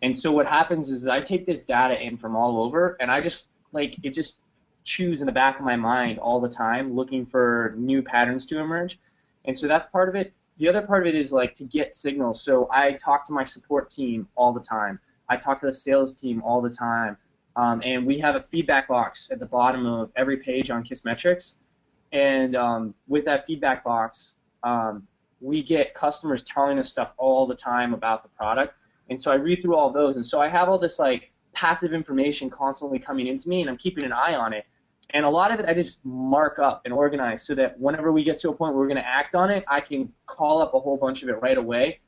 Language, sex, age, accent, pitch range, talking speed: English, male, 20-39, American, 125-155 Hz, 240 wpm